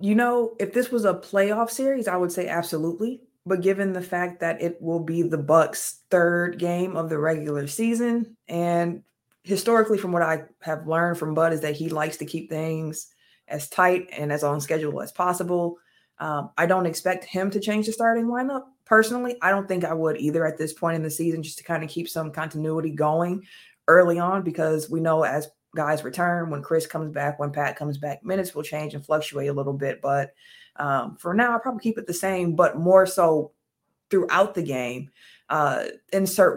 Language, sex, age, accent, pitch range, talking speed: English, female, 20-39, American, 155-185 Hz, 205 wpm